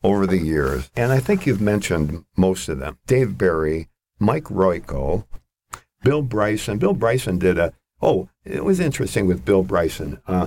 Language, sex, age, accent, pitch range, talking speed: English, male, 60-79, American, 90-115 Hz, 160 wpm